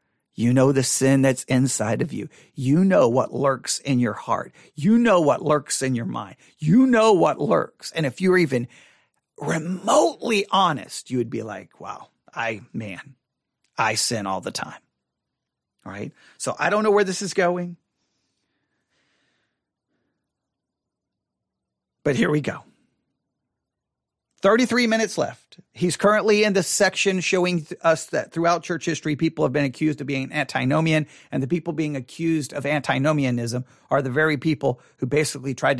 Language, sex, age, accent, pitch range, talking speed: English, male, 40-59, American, 135-180 Hz, 155 wpm